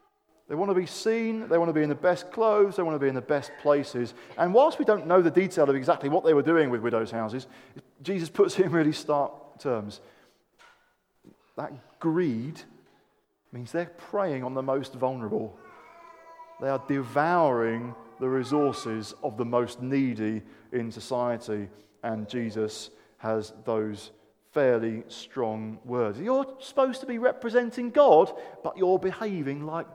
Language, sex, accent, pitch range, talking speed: English, male, British, 130-205 Hz, 160 wpm